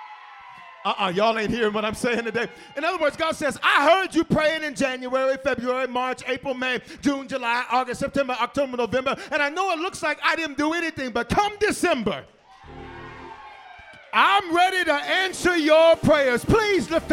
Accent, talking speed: American, 180 wpm